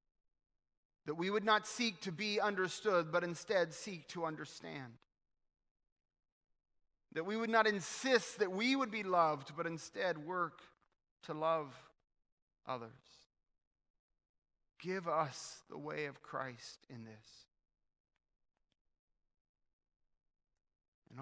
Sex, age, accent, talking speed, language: male, 30-49, American, 105 wpm, English